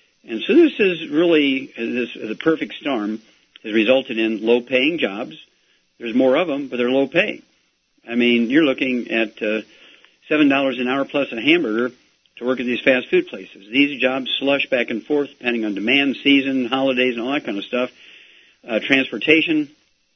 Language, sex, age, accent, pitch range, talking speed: English, male, 50-69, American, 115-145 Hz, 170 wpm